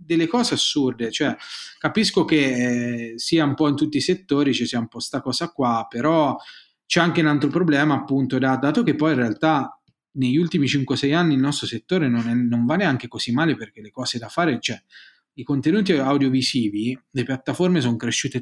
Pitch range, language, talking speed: 130-165 Hz, Italian, 200 wpm